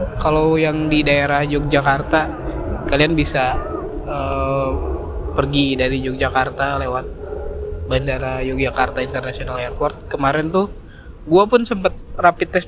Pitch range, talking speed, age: 135-170 Hz, 110 wpm, 20-39